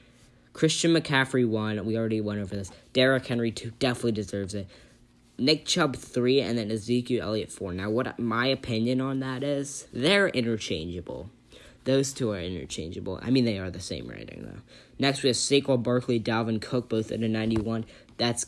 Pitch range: 110-130 Hz